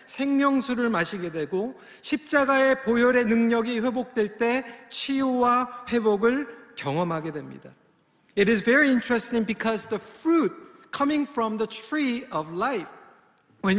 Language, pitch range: Korean, 190-245 Hz